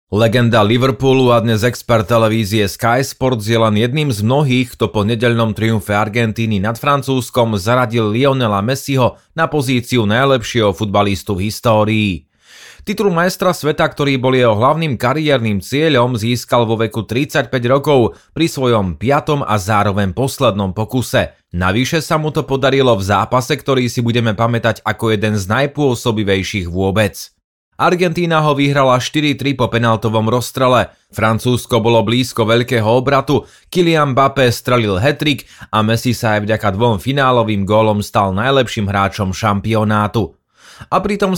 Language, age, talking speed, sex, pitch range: Slovak, 30-49, 140 wpm, male, 110-135 Hz